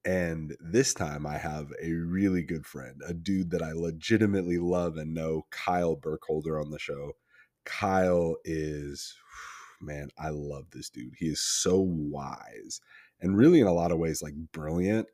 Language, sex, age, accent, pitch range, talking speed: English, male, 30-49, American, 75-85 Hz, 165 wpm